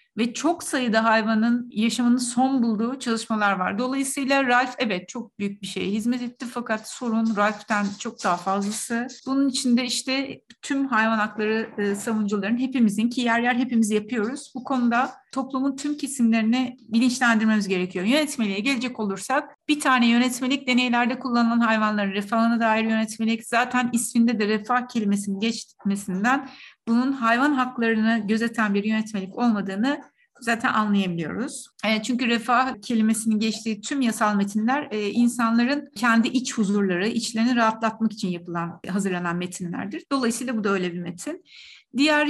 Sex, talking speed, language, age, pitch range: female, 135 wpm, Turkish, 60-79, 215-255 Hz